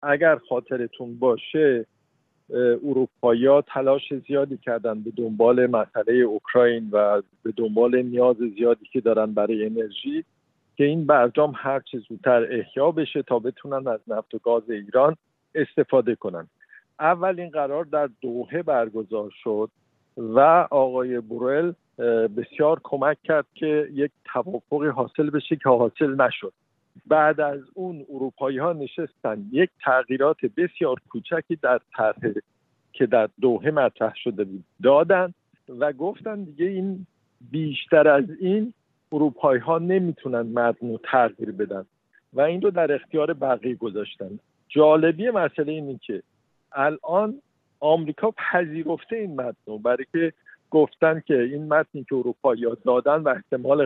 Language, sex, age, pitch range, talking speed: Persian, male, 50-69, 120-160 Hz, 130 wpm